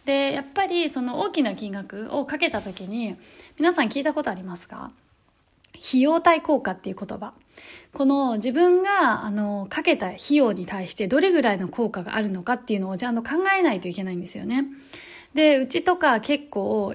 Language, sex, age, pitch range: Japanese, female, 20-39, 210-295 Hz